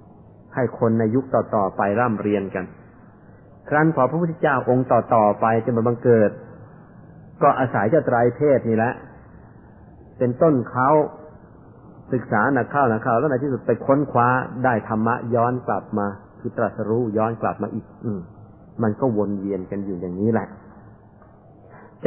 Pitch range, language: 105-125 Hz, Thai